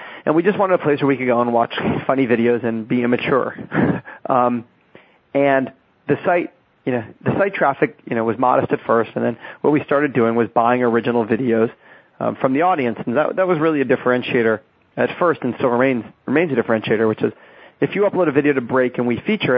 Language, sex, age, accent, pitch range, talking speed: English, male, 30-49, American, 115-140 Hz, 225 wpm